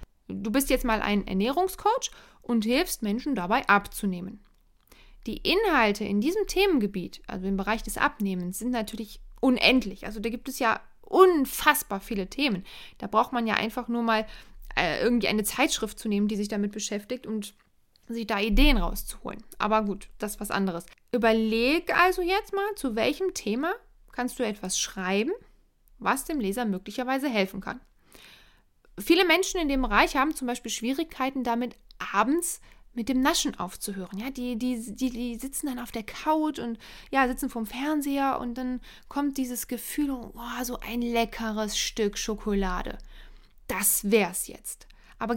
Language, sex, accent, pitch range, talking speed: German, female, German, 215-285 Hz, 160 wpm